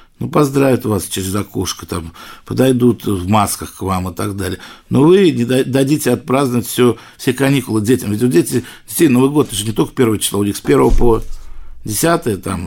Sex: male